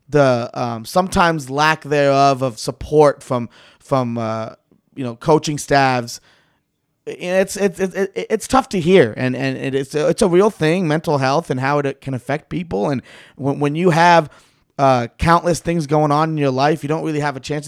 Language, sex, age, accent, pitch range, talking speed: English, male, 30-49, American, 130-155 Hz, 190 wpm